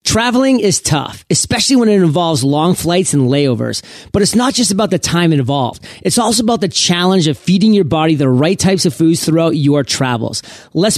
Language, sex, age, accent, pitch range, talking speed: English, male, 30-49, American, 150-195 Hz, 200 wpm